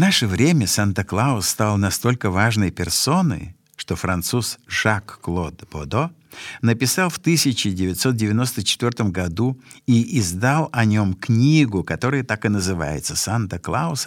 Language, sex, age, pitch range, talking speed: Russian, male, 50-69, 95-140 Hz, 110 wpm